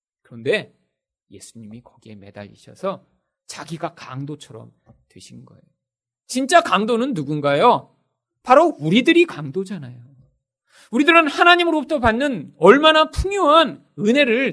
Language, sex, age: Korean, male, 40-59